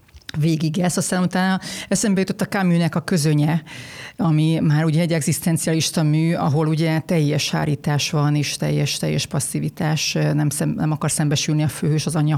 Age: 30-49